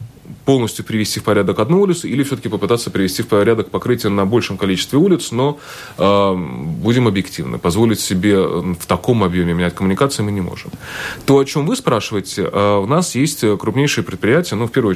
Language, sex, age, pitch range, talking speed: Russian, male, 20-39, 100-135 Hz, 180 wpm